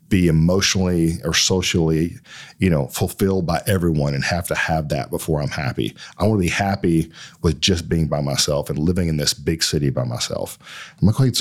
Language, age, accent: English, 40-59, American